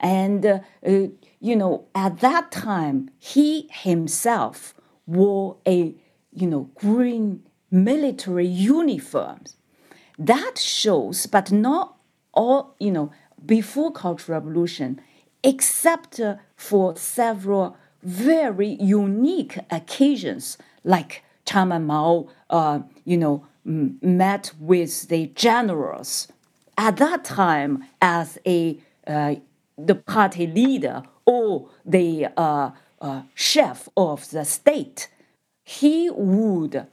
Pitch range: 170-255 Hz